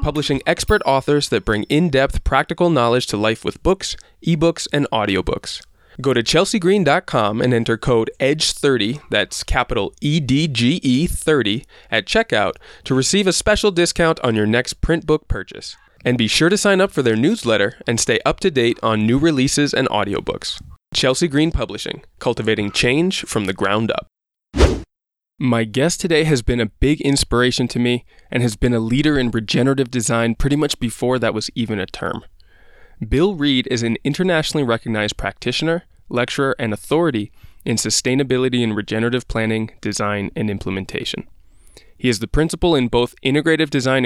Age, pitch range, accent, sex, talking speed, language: 20-39, 115-145 Hz, American, male, 160 wpm, English